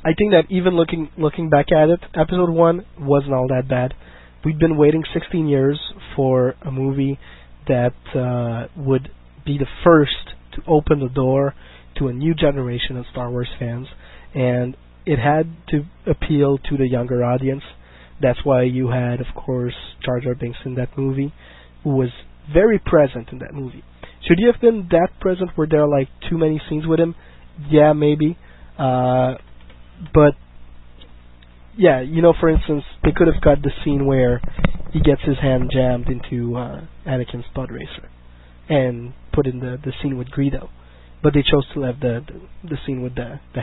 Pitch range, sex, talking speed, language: 120-150 Hz, male, 175 wpm, English